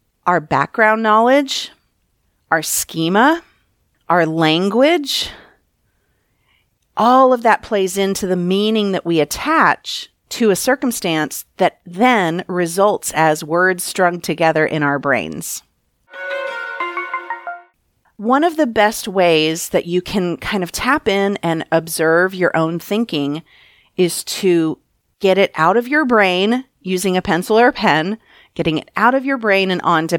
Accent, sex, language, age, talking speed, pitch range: American, female, English, 40-59, 135 wpm, 165-220 Hz